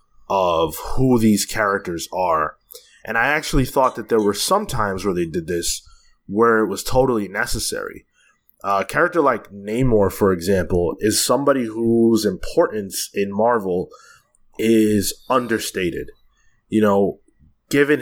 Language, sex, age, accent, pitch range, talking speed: English, male, 20-39, American, 100-125 Hz, 135 wpm